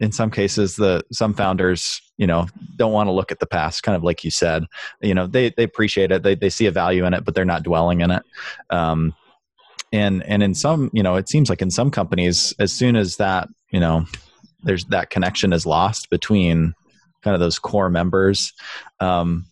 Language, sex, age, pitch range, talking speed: English, male, 20-39, 85-105 Hz, 215 wpm